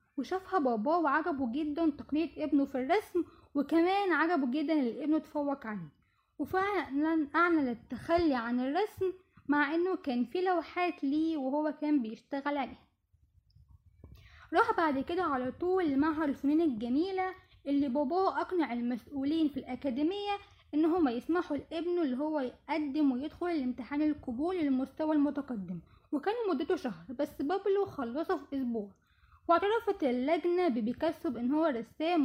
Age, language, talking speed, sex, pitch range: 10-29, Arabic, 130 wpm, female, 260-330 Hz